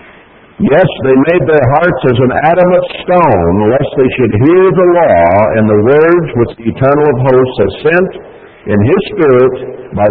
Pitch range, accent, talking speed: 100-135 Hz, American, 170 wpm